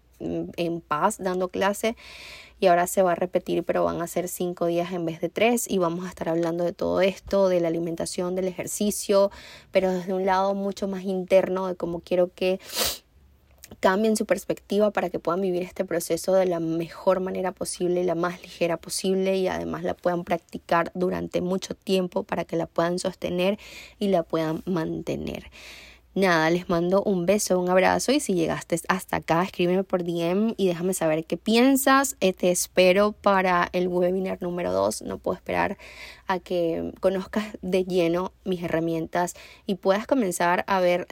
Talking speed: 180 wpm